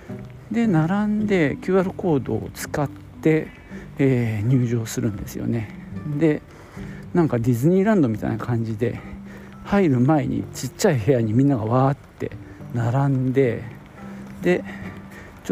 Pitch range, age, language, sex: 115-155 Hz, 50-69, Japanese, male